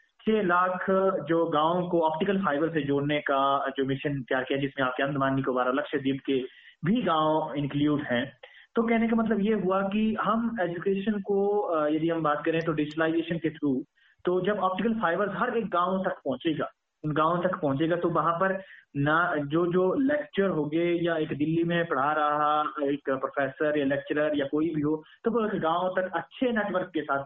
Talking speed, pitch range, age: 190 wpm, 140-180 Hz, 30-49